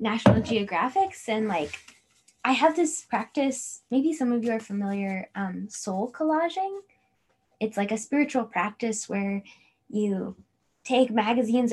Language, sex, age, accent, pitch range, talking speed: English, female, 10-29, American, 215-275 Hz, 135 wpm